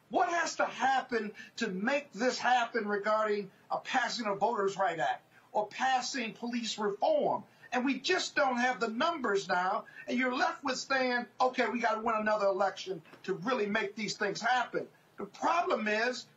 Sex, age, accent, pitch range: male, 50-69, American, 210-265 Hz